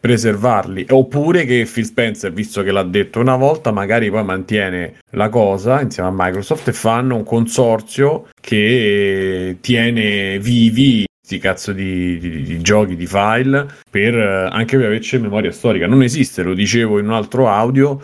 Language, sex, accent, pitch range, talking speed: Italian, male, native, 90-115 Hz, 165 wpm